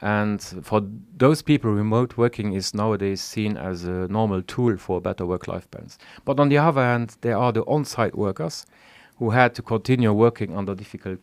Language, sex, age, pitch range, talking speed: English, male, 40-59, 95-120 Hz, 180 wpm